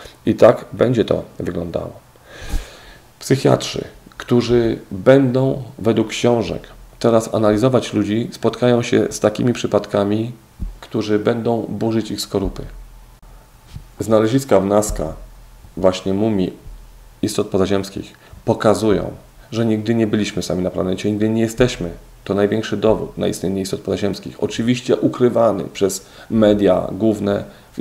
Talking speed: 115 wpm